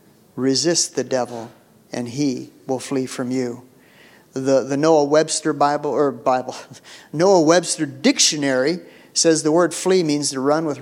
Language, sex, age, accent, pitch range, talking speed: English, male, 50-69, American, 130-165 Hz, 150 wpm